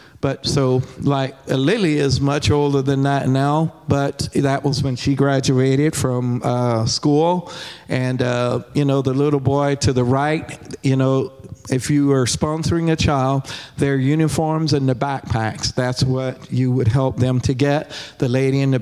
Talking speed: 170 wpm